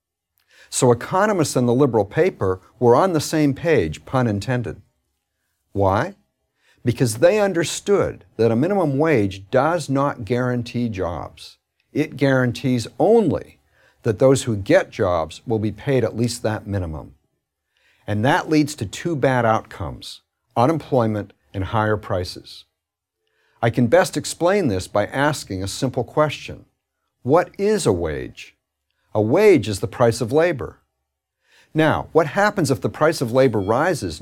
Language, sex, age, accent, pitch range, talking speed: English, male, 60-79, American, 100-140 Hz, 140 wpm